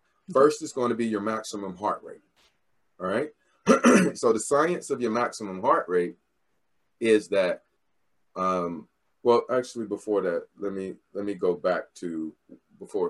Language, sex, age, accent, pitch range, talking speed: English, male, 30-49, American, 90-125 Hz, 145 wpm